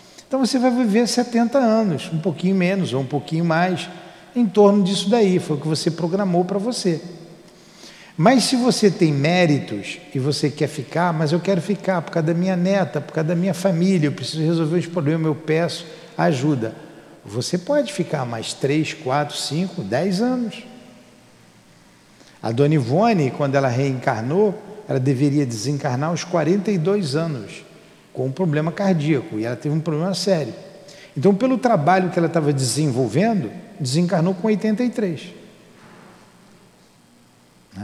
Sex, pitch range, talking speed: male, 145-195 Hz, 155 wpm